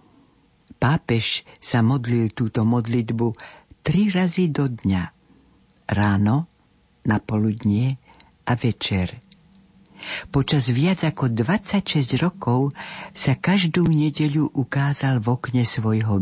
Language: Slovak